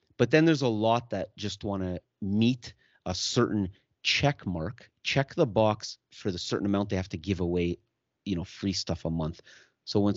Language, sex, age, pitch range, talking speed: English, male, 30-49, 90-110 Hz, 200 wpm